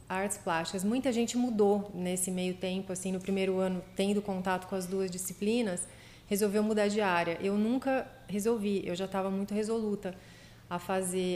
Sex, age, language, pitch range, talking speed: female, 30-49, Portuguese, 180-210 Hz, 170 wpm